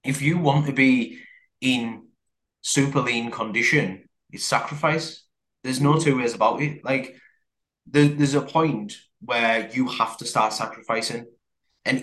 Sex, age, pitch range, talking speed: male, 20-39, 105-140 Hz, 145 wpm